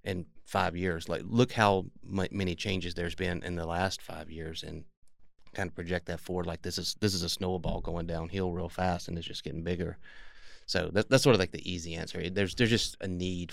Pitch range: 85-105 Hz